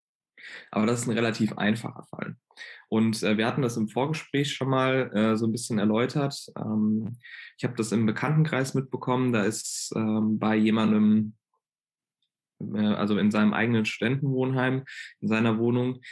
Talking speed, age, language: 155 wpm, 20-39, German